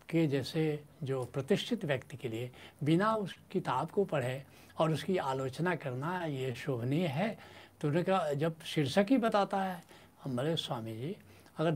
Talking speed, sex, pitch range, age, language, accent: 150 wpm, male, 130-185 Hz, 70-89, Hindi, native